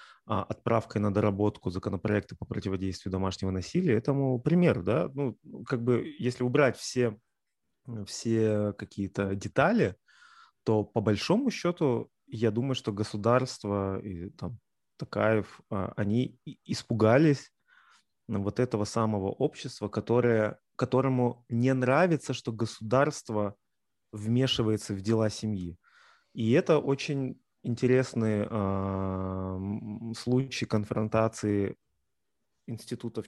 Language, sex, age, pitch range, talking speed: Russian, male, 30-49, 105-130 Hz, 100 wpm